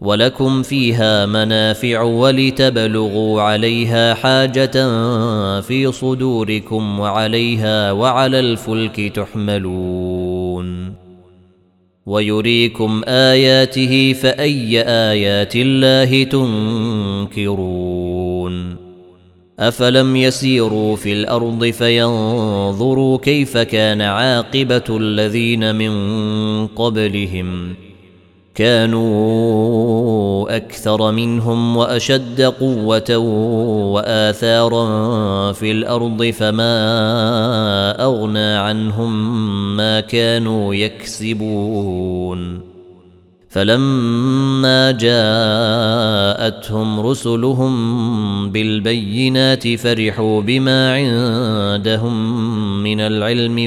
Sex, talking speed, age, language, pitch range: male, 60 wpm, 20-39, Arabic, 105-120 Hz